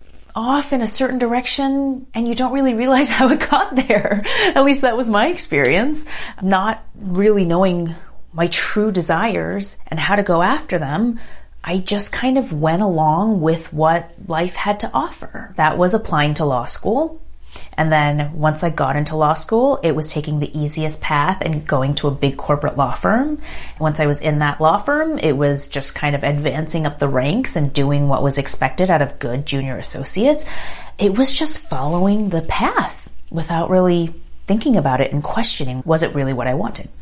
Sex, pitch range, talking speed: female, 145-205 Hz, 190 wpm